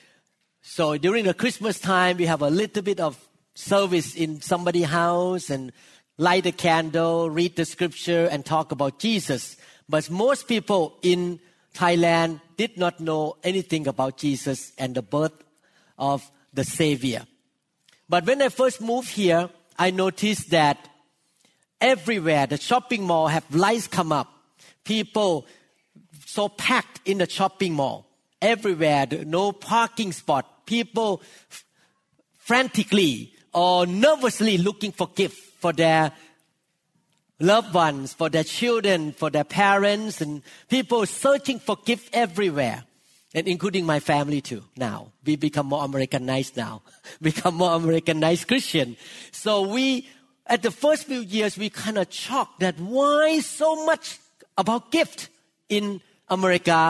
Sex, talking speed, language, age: male, 135 wpm, English, 50-69